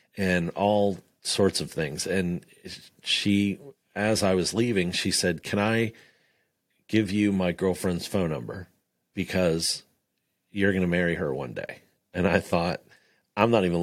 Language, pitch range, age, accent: English, 85-100 Hz, 40-59, American